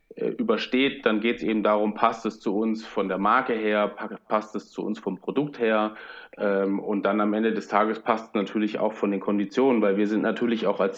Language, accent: German, German